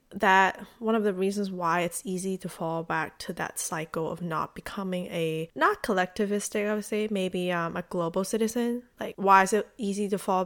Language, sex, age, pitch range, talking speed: English, female, 20-39, 175-210 Hz, 200 wpm